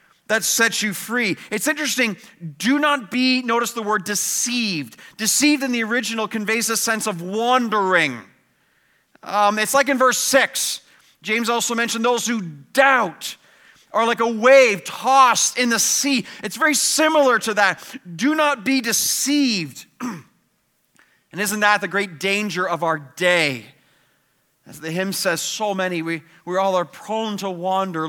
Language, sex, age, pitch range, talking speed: English, male, 30-49, 170-225 Hz, 155 wpm